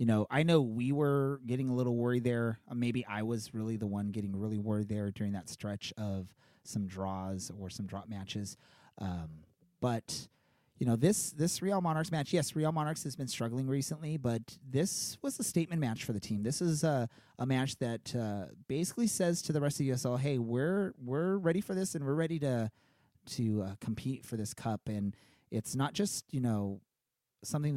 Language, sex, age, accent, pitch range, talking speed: English, male, 30-49, American, 110-145 Hz, 205 wpm